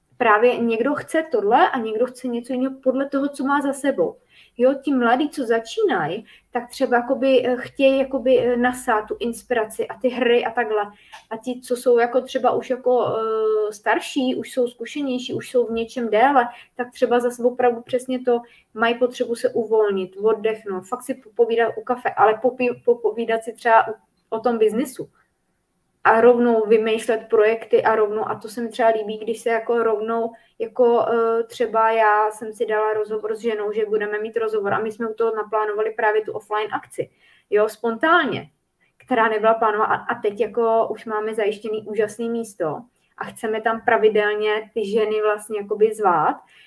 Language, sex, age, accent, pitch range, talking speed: Czech, female, 20-39, native, 215-250 Hz, 175 wpm